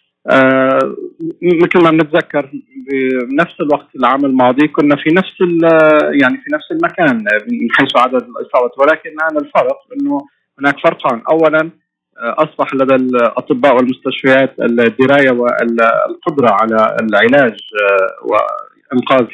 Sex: male